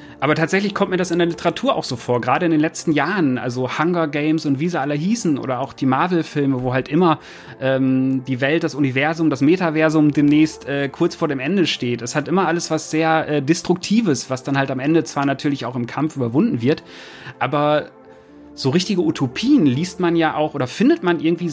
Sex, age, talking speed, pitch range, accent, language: male, 30-49, 215 wpm, 140-175 Hz, German, German